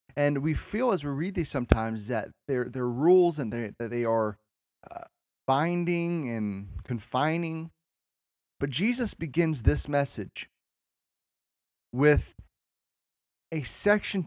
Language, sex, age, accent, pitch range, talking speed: English, male, 30-49, American, 120-150 Hz, 120 wpm